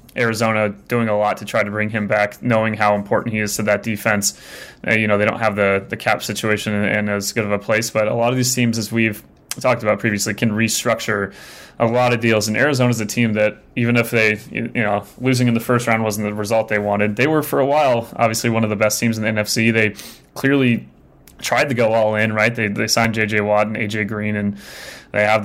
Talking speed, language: 250 wpm, English